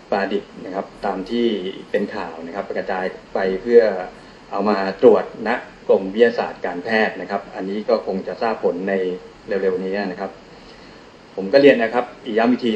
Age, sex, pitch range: 20-39, male, 100-130 Hz